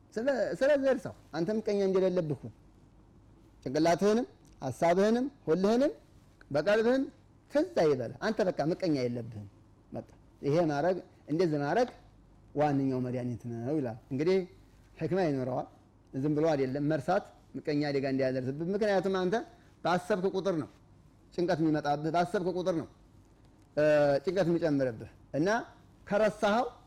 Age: 30-49